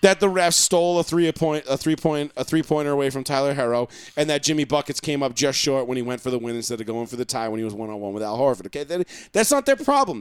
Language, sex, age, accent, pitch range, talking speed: English, male, 40-59, American, 145-205 Hz, 290 wpm